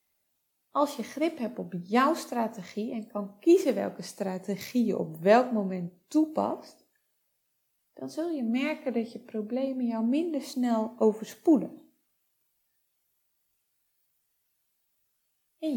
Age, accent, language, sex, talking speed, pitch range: 30-49, Dutch, Dutch, female, 110 wpm, 205-290 Hz